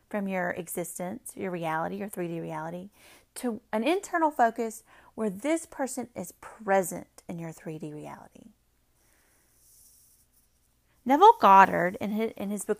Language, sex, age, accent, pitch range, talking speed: English, female, 30-49, American, 185-275 Hz, 130 wpm